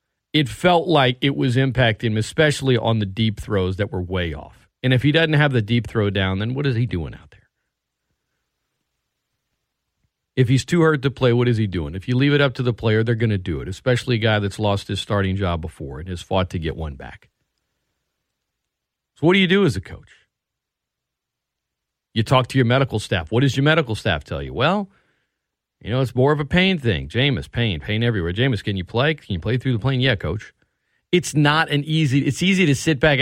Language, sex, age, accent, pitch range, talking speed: English, male, 40-59, American, 105-150 Hz, 230 wpm